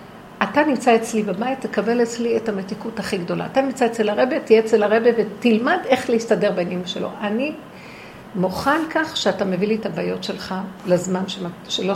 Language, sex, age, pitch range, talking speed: Hebrew, female, 50-69, 215-305 Hz, 165 wpm